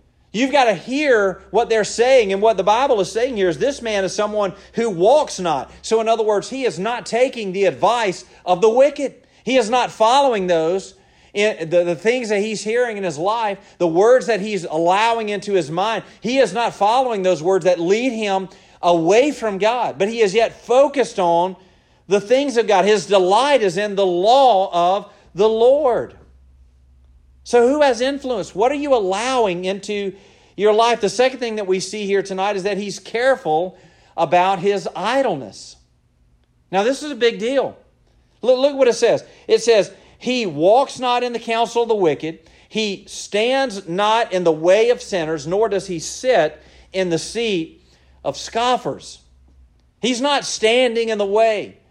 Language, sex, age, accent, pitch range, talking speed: English, male, 40-59, American, 185-245 Hz, 185 wpm